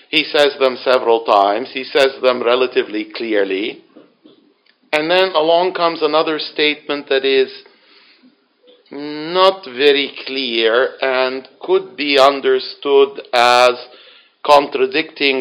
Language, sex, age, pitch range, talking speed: English, male, 50-69, 130-205 Hz, 105 wpm